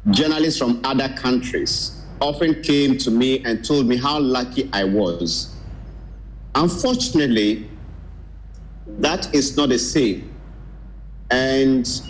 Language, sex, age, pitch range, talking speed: English, male, 50-69, 115-155 Hz, 110 wpm